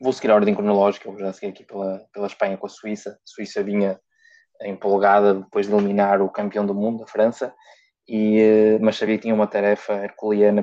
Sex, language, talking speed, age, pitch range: male, Portuguese, 200 wpm, 20-39, 100-110 Hz